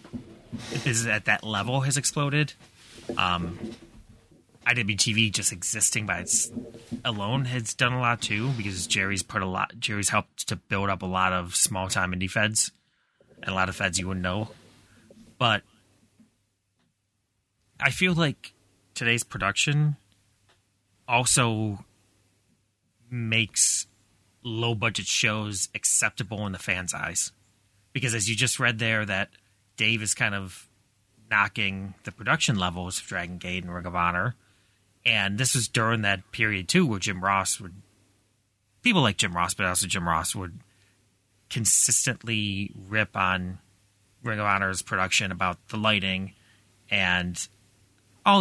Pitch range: 95-115 Hz